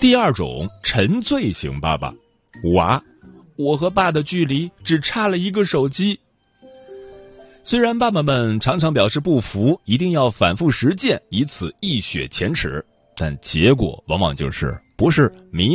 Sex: male